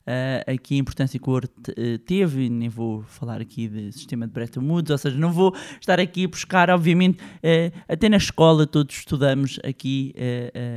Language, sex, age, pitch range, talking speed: Portuguese, male, 20-39, 125-160 Hz, 195 wpm